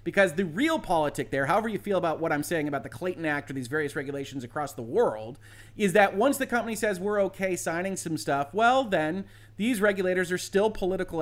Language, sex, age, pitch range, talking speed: English, male, 30-49, 150-220 Hz, 220 wpm